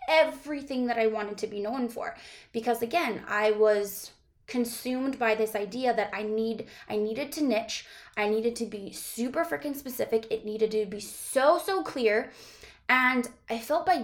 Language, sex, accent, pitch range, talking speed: English, female, American, 215-250 Hz, 175 wpm